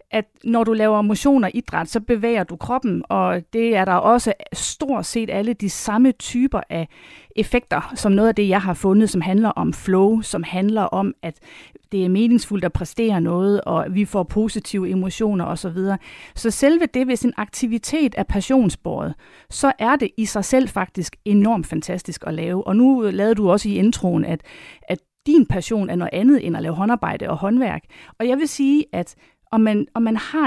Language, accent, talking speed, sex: Danish, native, 195 wpm, female